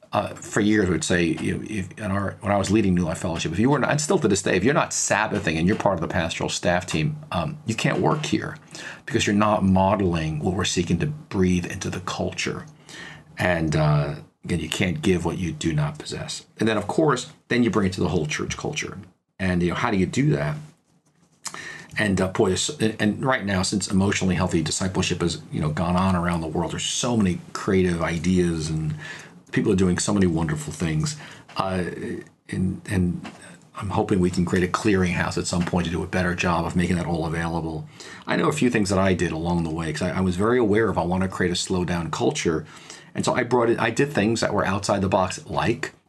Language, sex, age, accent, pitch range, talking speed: English, male, 40-59, American, 90-110 Hz, 235 wpm